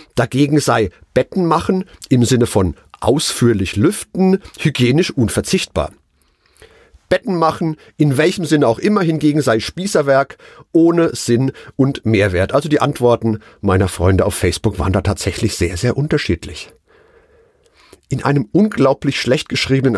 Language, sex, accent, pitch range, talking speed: German, male, German, 105-160 Hz, 130 wpm